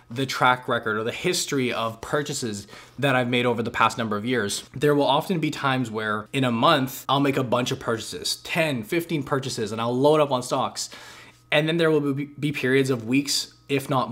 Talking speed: 215 wpm